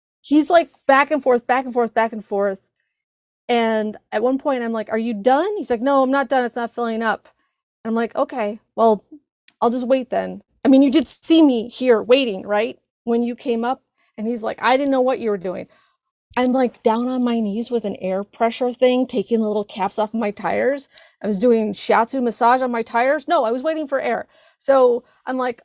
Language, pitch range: English, 225-280 Hz